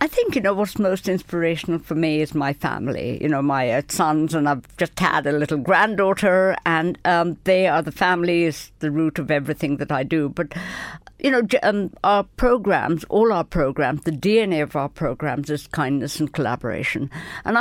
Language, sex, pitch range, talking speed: English, female, 155-210 Hz, 185 wpm